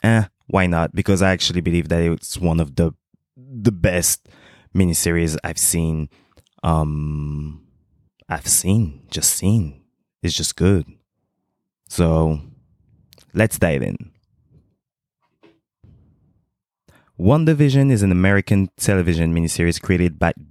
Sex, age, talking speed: male, 20-39, 110 wpm